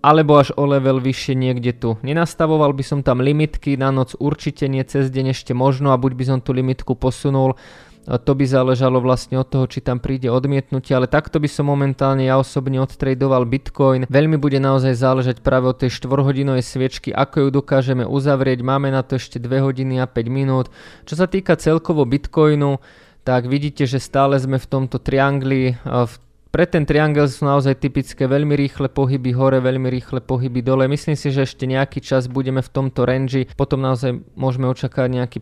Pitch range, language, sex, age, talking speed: 130-140 Hz, Slovak, male, 20-39, 190 wpm